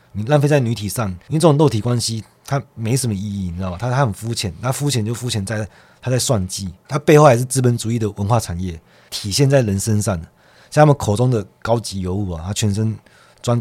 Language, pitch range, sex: Chinese, 95-125 Hz, male